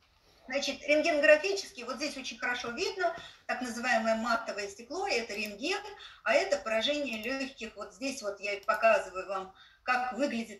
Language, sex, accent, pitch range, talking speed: Russian, female, native, 225-315 Hz, 140 wpm